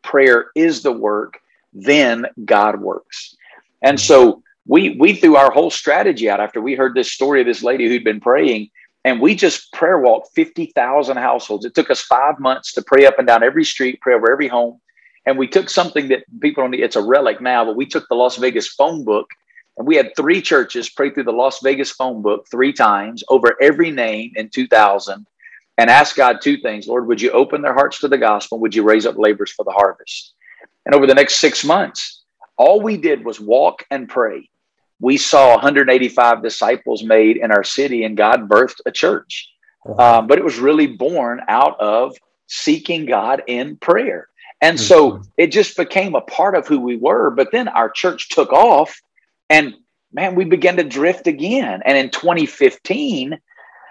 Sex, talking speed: male, 195 wpm